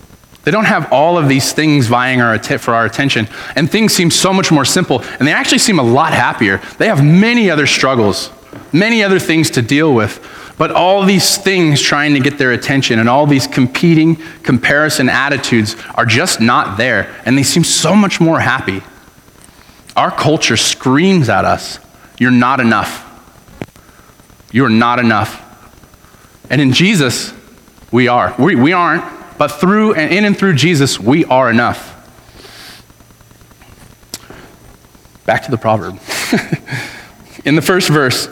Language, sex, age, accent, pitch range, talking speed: English, male, 30-49, American, 120-155 Hz, 155 wpm